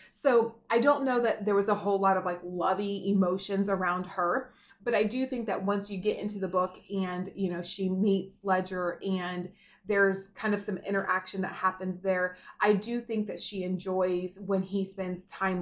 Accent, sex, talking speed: American, female, 200 wpm